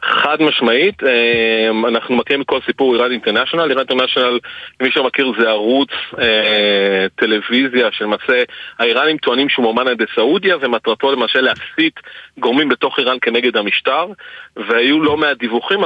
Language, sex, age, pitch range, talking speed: Hebrew, male, 40-59, 115-155 Hz, 135 wpm